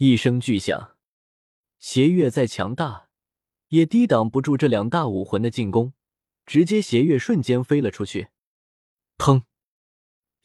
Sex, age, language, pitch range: male, 20-39, Chinese, 105-155 Hz